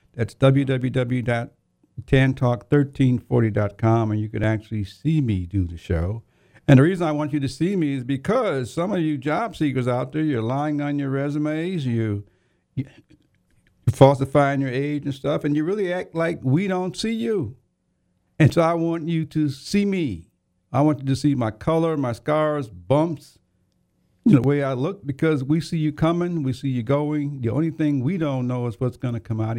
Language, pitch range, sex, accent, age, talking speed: English, 110-150 Hz, male, American, 60-79, 185 wpm